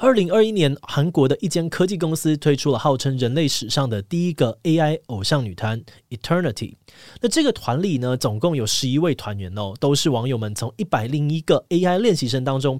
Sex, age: male, 20-39